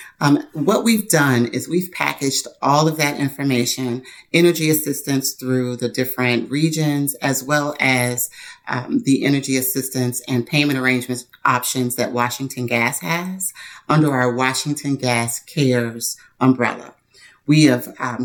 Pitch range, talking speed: 120-145 Hz, 135 wpm